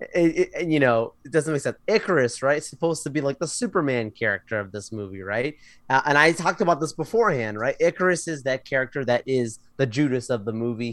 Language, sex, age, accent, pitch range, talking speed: English, male, 30-49, American, 125-170 Hz, 220 wpm